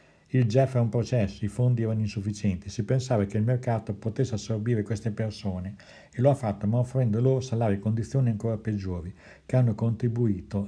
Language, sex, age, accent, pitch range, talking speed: Italian, male, 60-79, native, 100-120 Hz, 185 wpm